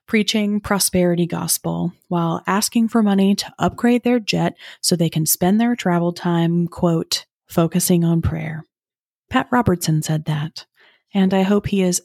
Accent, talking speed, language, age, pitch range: American, 155 wpm, English, 30-49, 170-210 Hz